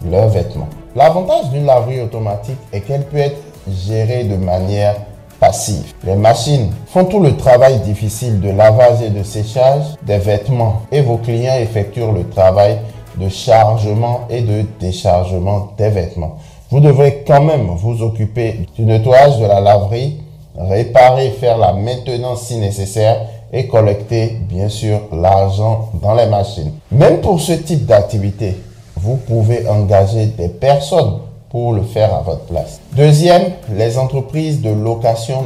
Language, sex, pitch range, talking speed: French, male, 105-130 Hz, 145 wpm